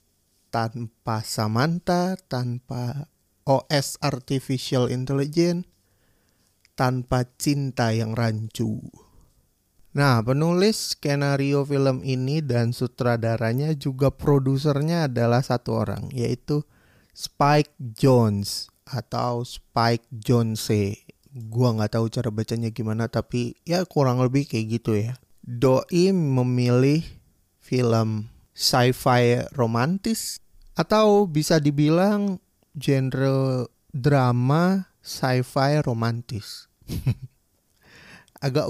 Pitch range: 115-150 Hz